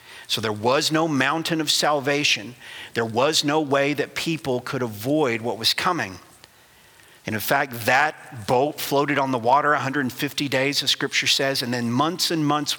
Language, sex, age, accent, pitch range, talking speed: English, male, 50-69, American, 135-175 Hz, 175 wpm